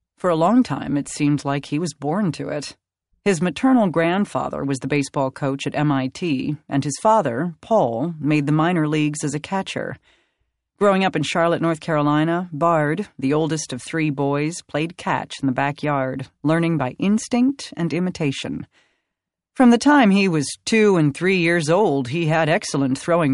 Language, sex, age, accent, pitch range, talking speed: English, female, 40-59, American, 135-180 Hz, 175 wpm